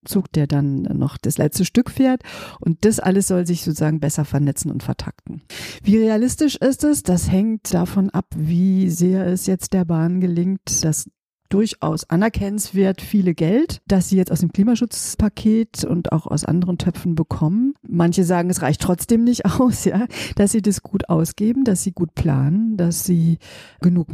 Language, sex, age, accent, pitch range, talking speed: German, female, 50-69, German, 160-195 Hz, 175 wpm